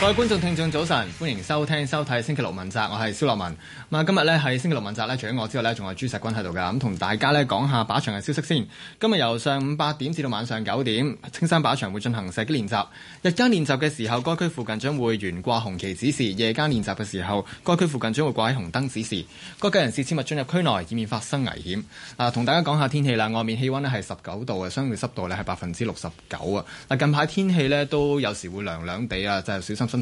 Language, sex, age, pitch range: Chinese, male, 20-39, 105-145 Hz